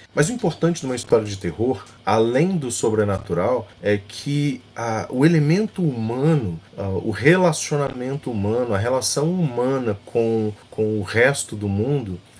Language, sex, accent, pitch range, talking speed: Portuguese, male, Brazilian, 105-160 Hz, 140 wpm